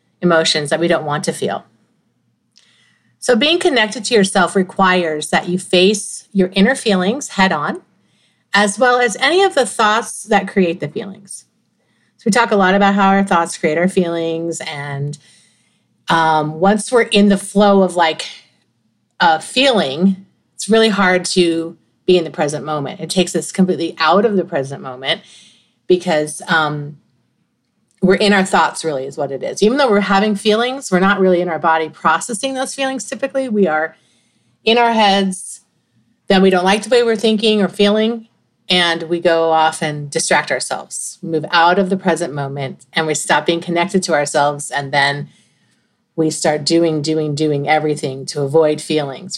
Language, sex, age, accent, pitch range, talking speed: English, female, 40-59, American, 155-200 Hz, 175 wpm